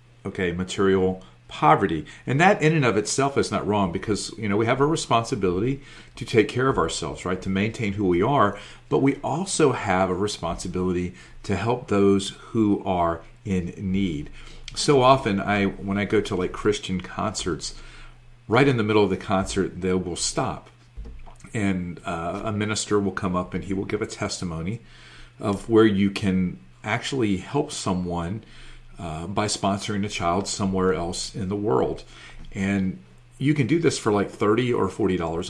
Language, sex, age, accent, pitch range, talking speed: English, male, 40-59, American, 95-120 Hz, 175 wpm